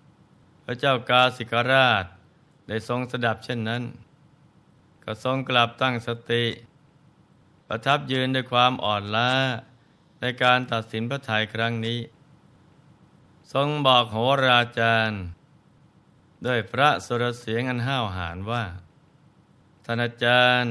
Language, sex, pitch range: Thai, male, 115-135 Hz